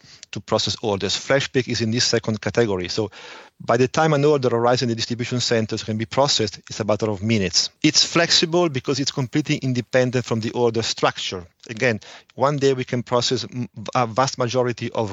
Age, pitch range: 40-59, 115-135 Hz